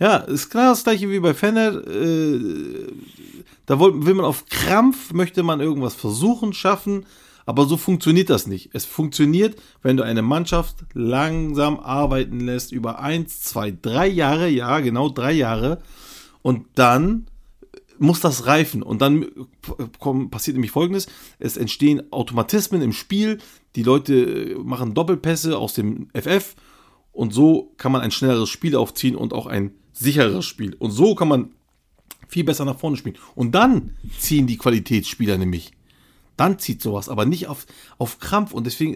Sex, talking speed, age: male, 155 wpm, 40-59